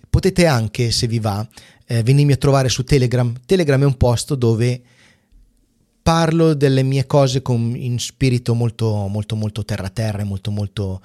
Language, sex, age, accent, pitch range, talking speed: Italian, male, 30-49, native, 110-135 Hz, 155 wpm